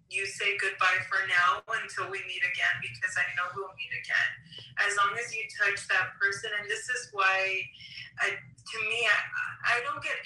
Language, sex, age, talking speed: English, female, 20-39, 185 wpm